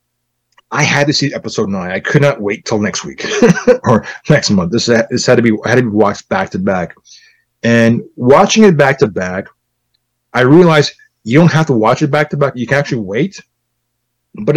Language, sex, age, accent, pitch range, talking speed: English, male, 30-49, American, 110-150 Hz, 205 wpm